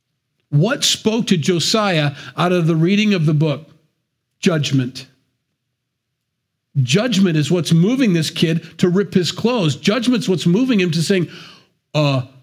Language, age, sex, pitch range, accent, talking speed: English, 40-59, male, 130-160 Hz, American, 140 wpm